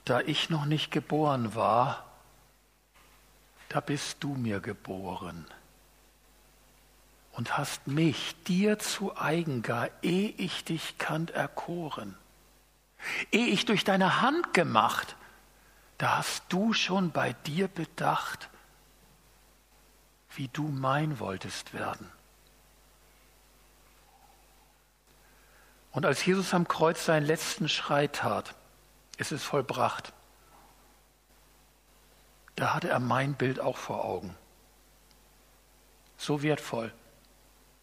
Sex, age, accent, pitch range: male, 60-79, German, 125-170 Hz